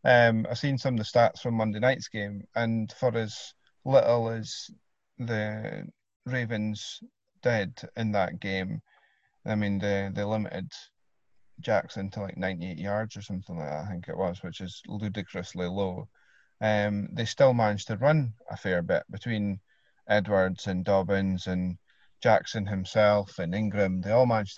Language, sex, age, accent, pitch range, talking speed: English, male, 30-49, British, 95-115 Hz, 160 wpm